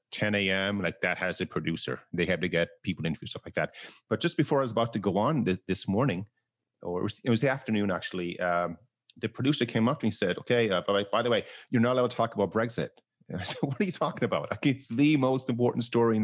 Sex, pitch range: male, 95-125 Hz